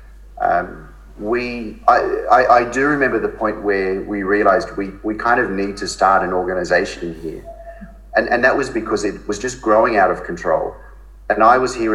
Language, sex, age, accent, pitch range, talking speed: English, male, 30-49, Australian, 95-145 Hz, 190 wpm